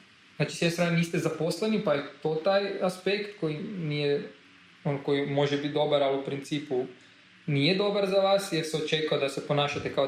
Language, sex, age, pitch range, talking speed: Croatian, male, 20-39, 160-210 Hz, 175 wpm